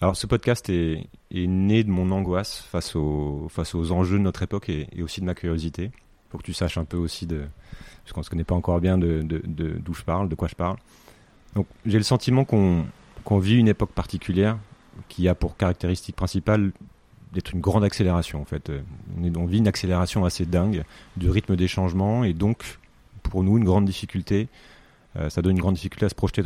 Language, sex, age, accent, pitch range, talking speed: French, male, 30-49, French, 85-100 Hz, 220 wpm